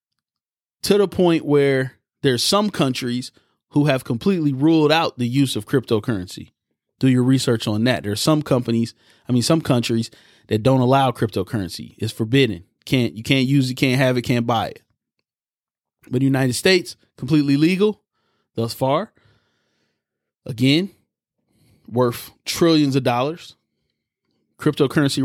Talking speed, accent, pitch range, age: 145 wpm, American, 125-160 Hz, 20-39